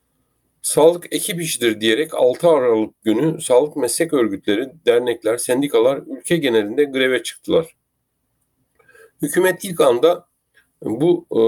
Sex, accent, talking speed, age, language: male, native, 105 wpm, 50-69, Turkish